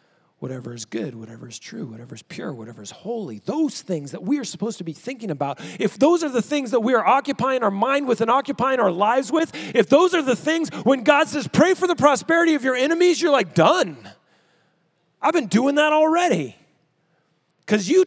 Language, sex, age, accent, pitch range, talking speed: English, male, 40-59, American, 165-260 Hz, 215 wpm